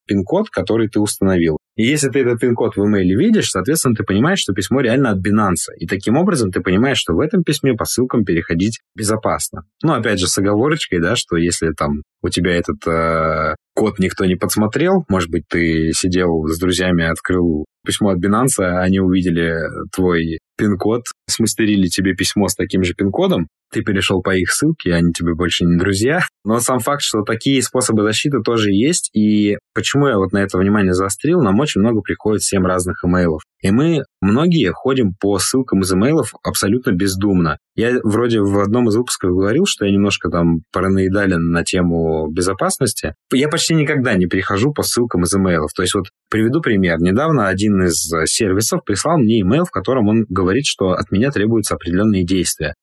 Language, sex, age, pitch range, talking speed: Russian, male, 20-39, 90-110 Hz, 185 wpm